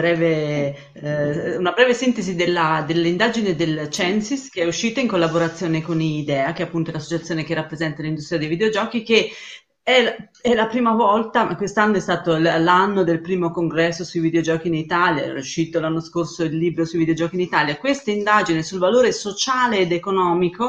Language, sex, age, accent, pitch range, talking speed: Italian, female, 30-49, native, 165-220 Hz, 170 wpm